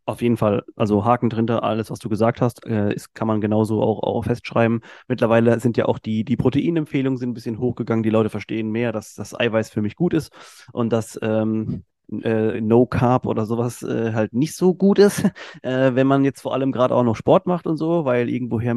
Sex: male